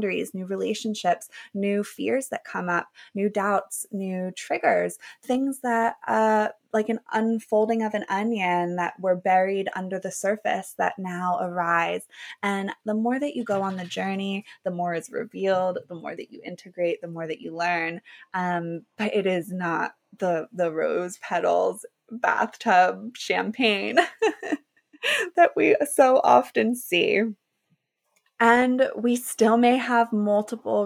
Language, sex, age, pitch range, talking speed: English, female, 20-39, 185-230 Hz, 145 wpm